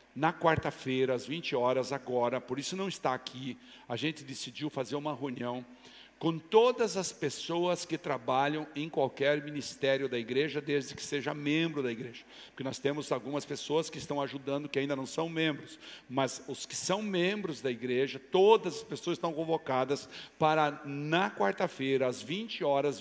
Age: 60-79